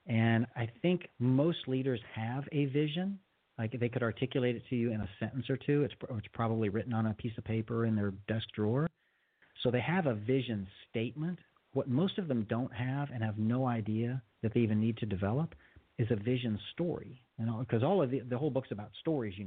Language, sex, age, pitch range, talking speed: English, male, 40-59, 110-135 Hz, 220 wpm